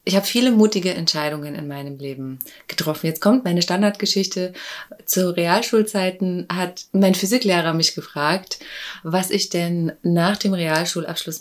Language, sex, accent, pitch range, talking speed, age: German, female, German, 160-215 Hz, 135 wpm, 30-49